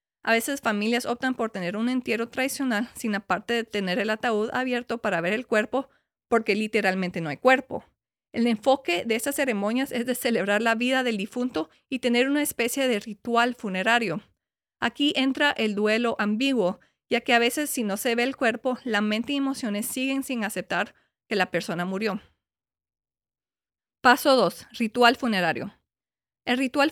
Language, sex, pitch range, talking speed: English, female, 205-260 Hz, 170 wpm